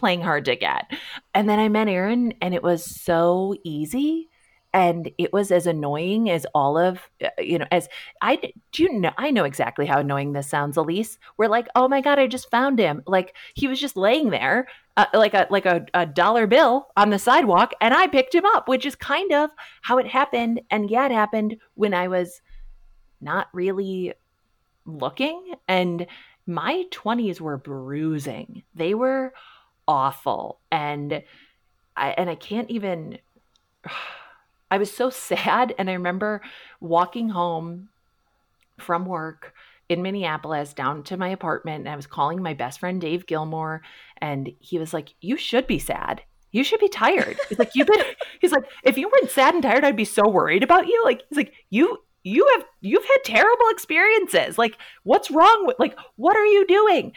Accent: American